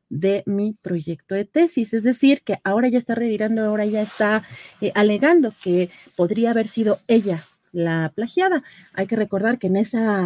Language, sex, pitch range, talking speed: Spanish, female, 180-210 Hz, 175 wpm